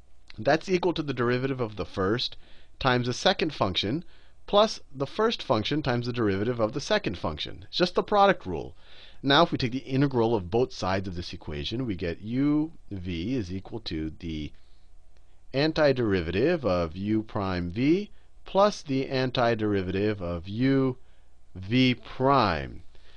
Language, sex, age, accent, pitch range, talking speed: English, male, 40-59, American, 90-130 Hz, 155 wpm